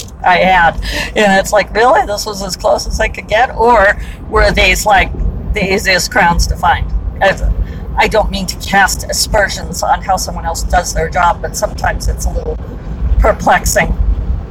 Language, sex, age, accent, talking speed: English, female, 40-59, American, 175 wpm